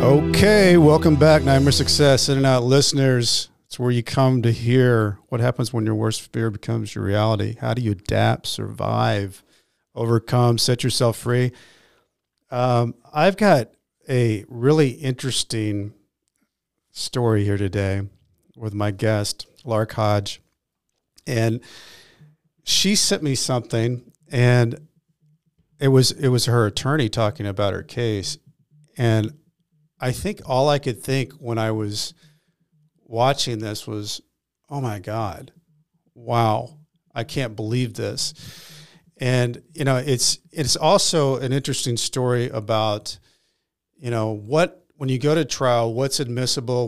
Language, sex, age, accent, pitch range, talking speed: English, male, 50-69, American, 115-145 Hz, 135 wpm